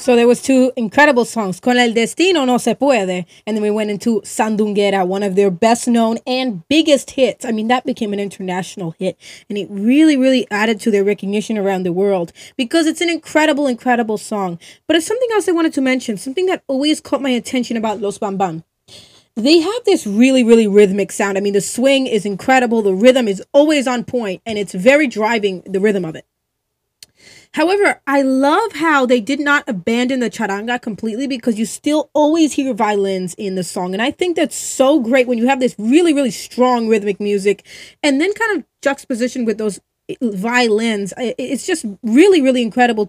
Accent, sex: American, female